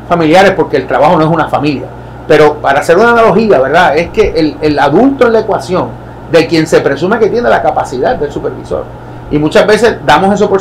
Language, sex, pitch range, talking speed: English, male, 155-220 Hz, 215 wpm